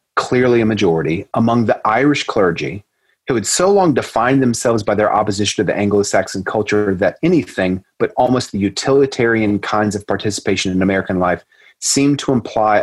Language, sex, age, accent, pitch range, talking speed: English, male, 30-49, American, 100-125 Hz, 165 wpm